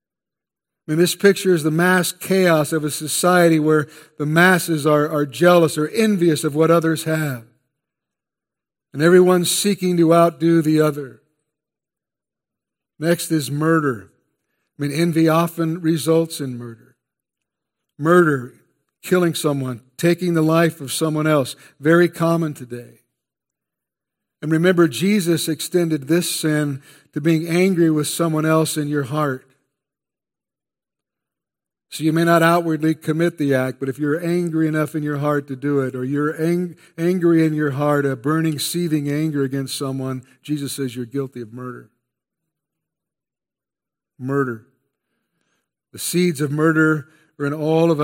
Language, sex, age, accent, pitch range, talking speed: English, male, 60-79, American, 140-165 Hz, 140 wpm